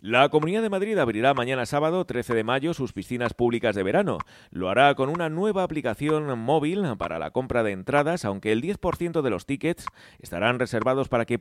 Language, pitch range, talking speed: Spanish, 115-140 Hz, 195 wpm